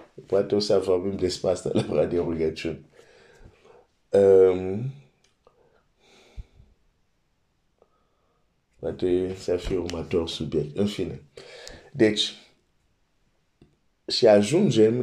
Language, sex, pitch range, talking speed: Romanian, male, 90-115 Hz, 90 wpm